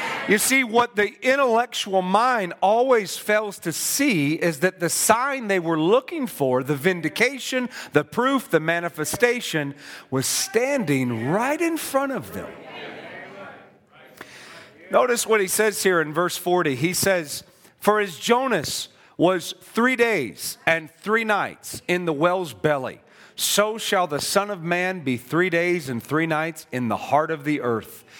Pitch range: 145-210 Hz